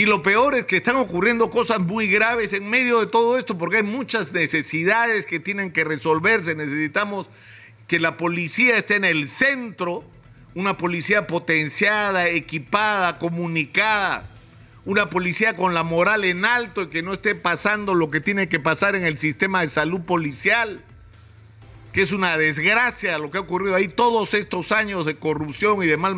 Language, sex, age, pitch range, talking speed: Spanish, male, 50-69, 155-205 Hz, 175 wpm